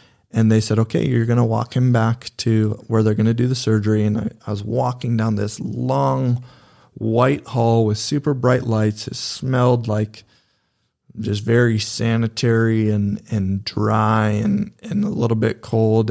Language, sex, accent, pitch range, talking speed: English, male, American, 110-120 Hz, 175 wpm